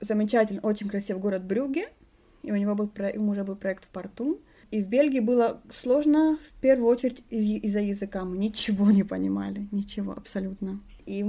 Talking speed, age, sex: 190 wpm, 20-39, female